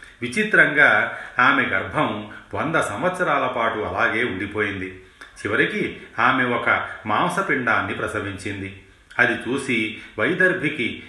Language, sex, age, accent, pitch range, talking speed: Telugu, male, 40-59, native, 95-115 Hz, 85 wpm